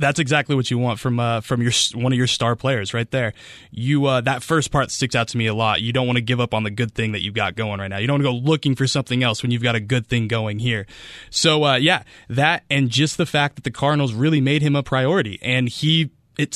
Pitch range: 125-155 Hz